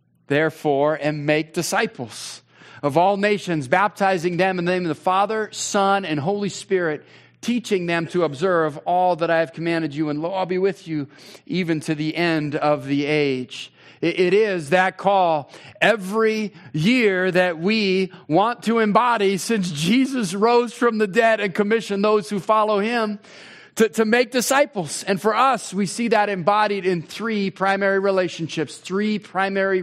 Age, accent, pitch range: 40-59, American, 175-210 Hz